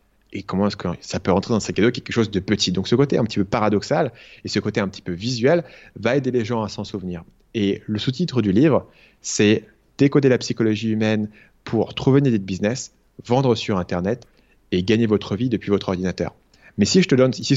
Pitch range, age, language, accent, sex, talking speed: 100-120 Hz, 30-49, French, French, male, 235 wpm